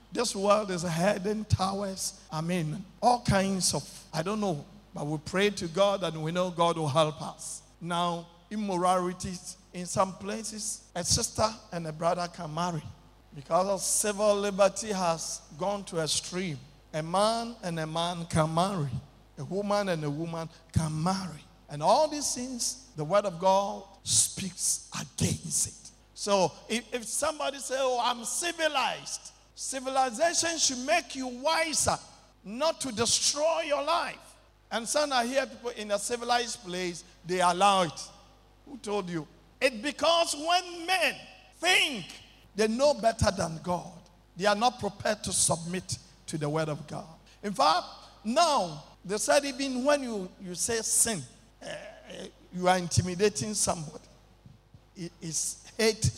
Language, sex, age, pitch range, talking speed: English, male, 50-69, 170-235 Hz, 150 wpm